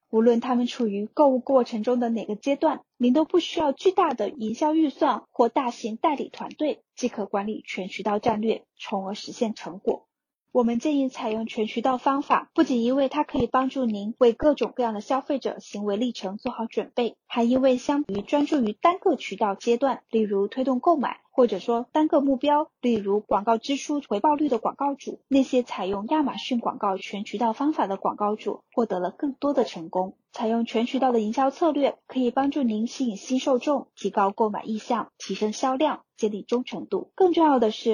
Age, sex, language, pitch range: 10-29, female, Chinese, 220-275 Hz